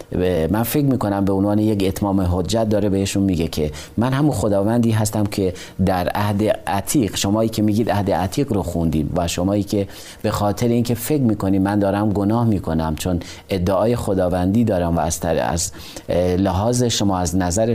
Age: 30-49